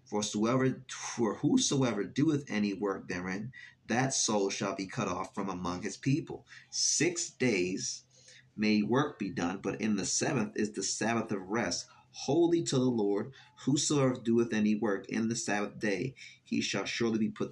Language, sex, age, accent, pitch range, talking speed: English, male, 30-49, American, 105-130 Hz, 165 wpm